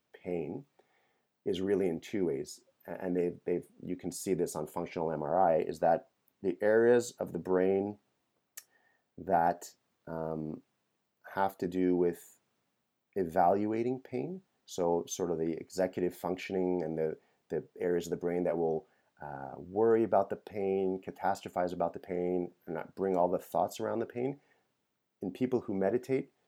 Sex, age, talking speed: male, 30-49, 150 wpm